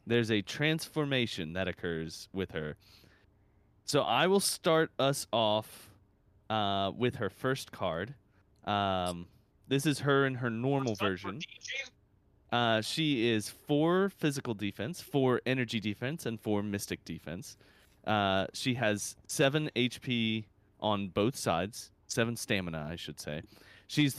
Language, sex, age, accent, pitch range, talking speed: English, male, 30-49, American, 100-125 Hz, 130 wpm